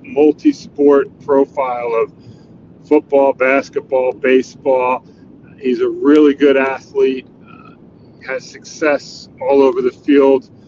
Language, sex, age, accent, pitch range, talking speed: English, male, 40-59, American, 130-165 Hz, 100 wpm